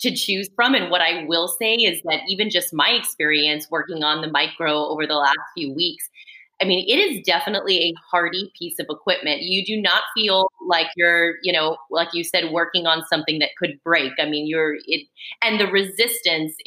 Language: English